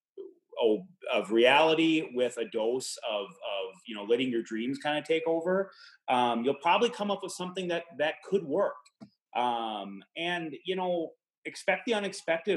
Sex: male